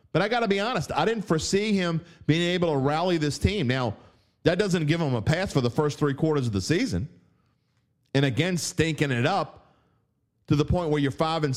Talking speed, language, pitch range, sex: 225 wpm, English, 125-165 Hz, male